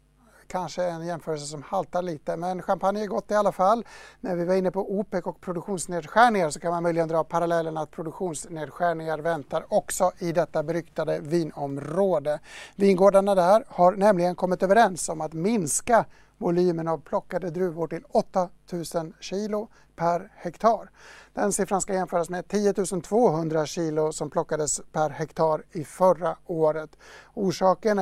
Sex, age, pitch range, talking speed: male, 60-79, 165-195 Hz, 150 wpm